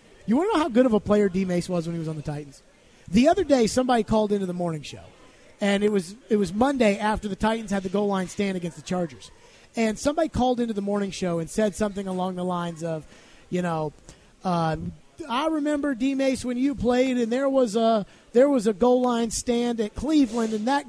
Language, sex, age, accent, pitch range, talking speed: English, male, 30-49, American, 185-245 Hz, 235 wpm